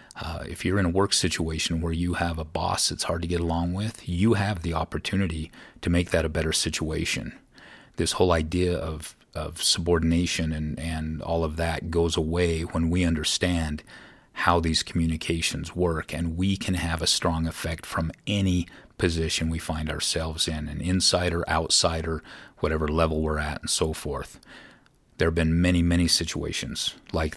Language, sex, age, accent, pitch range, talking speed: English, male, 40-59, American, 80-90 Hz, 175 wpm